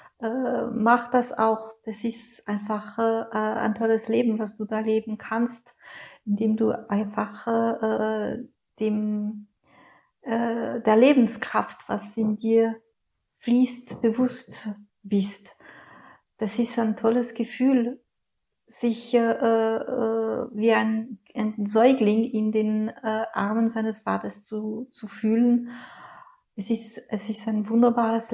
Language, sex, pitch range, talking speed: German, female, 210-230 Hz, 120 wpm